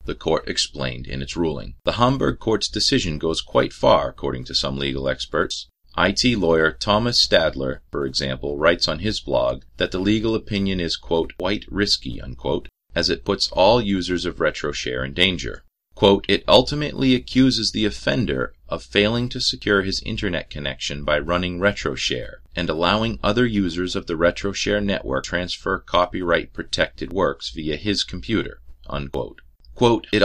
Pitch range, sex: 70-105 Hz, male